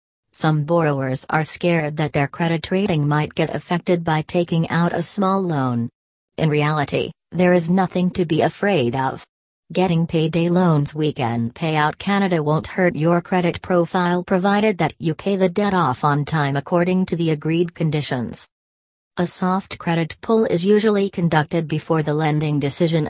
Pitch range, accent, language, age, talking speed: 150-175 Hz, American, English, 40-59, 160 wpm